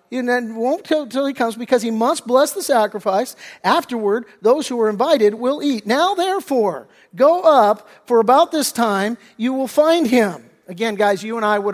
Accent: American